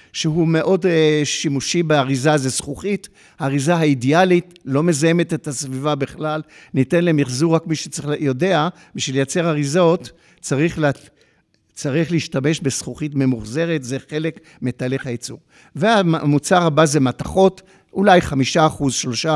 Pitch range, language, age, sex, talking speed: 140-175 Hz, Hebrew, 50-69, male, 120 wpm